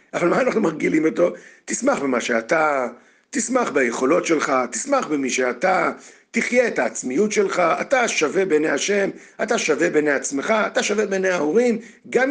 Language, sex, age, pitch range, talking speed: Hebrew, male, 50-69, 190-245 Hz, 150 wpm